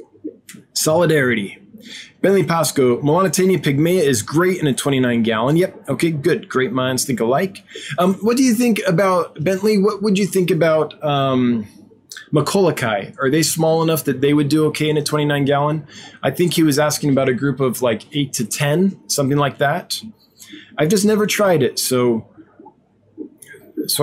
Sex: male